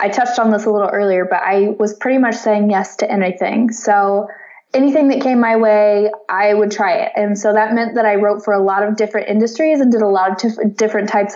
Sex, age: female, 20-39